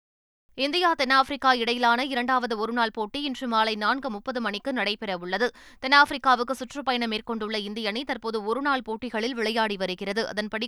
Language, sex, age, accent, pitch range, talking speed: Tamil, female, 20-39, native, 225-280 Hz, 130 wpm